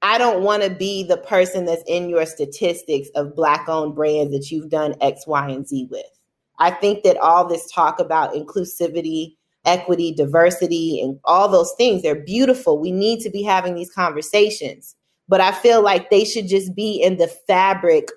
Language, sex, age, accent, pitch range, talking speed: English, female, 30-49, American, 160-205 Hz, 185 wpm